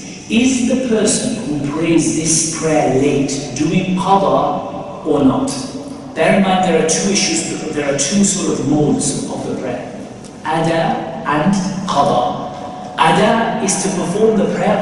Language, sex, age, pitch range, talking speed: English, male, 50-69, 160-200 Hz, 150 wpm